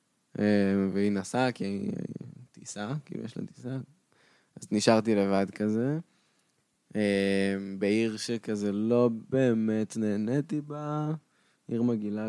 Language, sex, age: Hebrew, male, 20-39